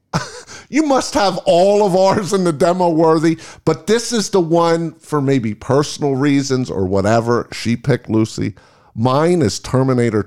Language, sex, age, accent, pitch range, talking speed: English, male, 50-69, American, 120-165 Hz, 160 wpm